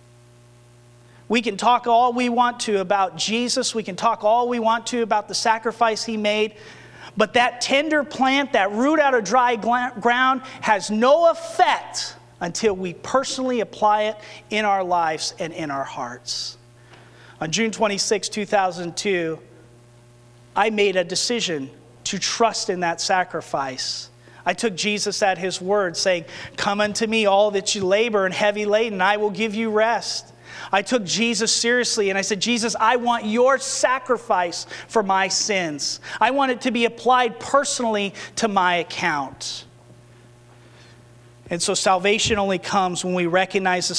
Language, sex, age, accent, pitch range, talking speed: English, male, 30-49, American, 150-225 Hz, 155 wpm